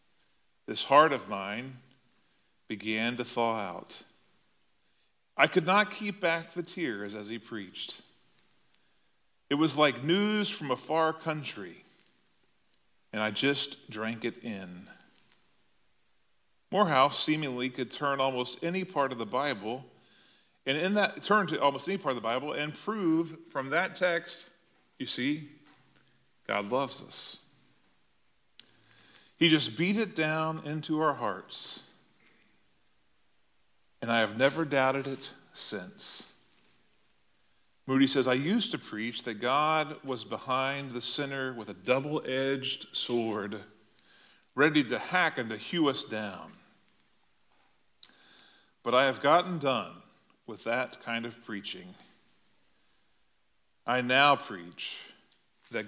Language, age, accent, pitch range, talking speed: English, 40-59, American, 120-155 Hz, 125 wpm